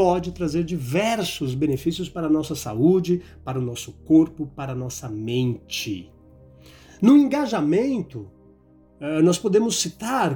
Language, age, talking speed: Portuguese, 50-69, 120 wpm